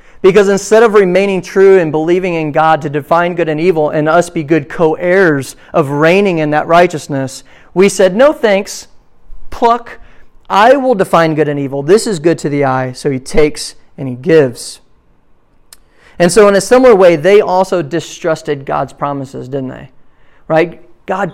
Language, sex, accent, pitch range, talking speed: English, male, American, 160-225 Hz, 175 wpm